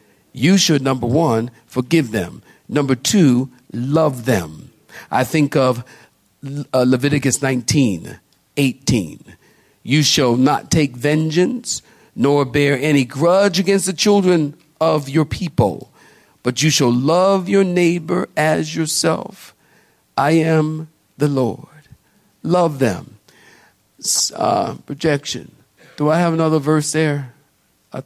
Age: 50-69